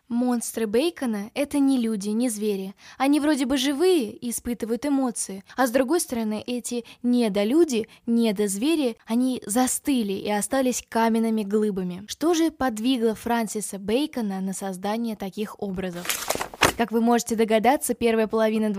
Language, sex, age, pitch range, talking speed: Russian, female, 10-29, 210-255 Hz, 135 wpm